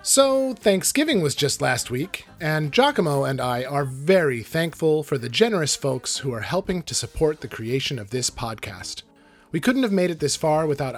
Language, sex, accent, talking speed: English, male, American, 190 wpm